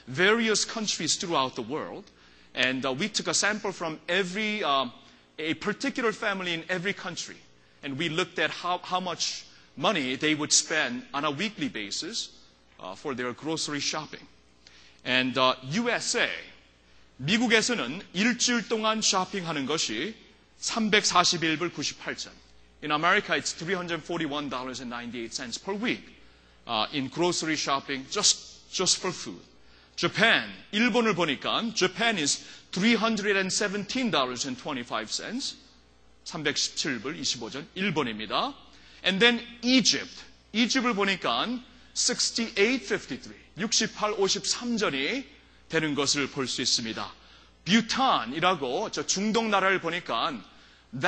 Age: 30-49